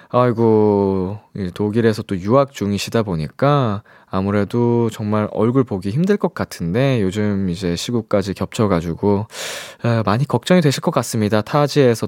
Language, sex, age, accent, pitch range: Korean, male, 20-39, native, 105-160 Hz